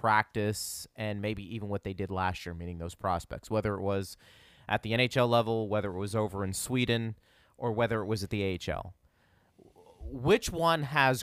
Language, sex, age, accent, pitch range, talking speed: English, male, 30-49, American, 95-125 Hz, 185 wpm